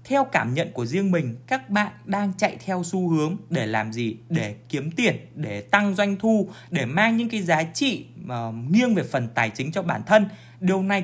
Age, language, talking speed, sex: 20-39, Vietnamese, 210 wpm, male